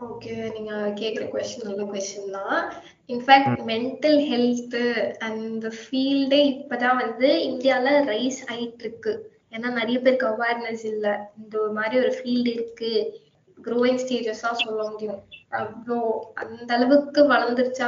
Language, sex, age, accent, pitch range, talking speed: Tamil, female, 20-39, native, 230-270 Hz, 130 wpm